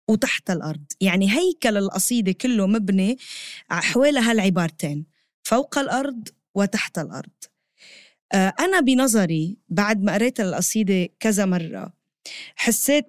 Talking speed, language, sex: 100 wpm, Arabic, female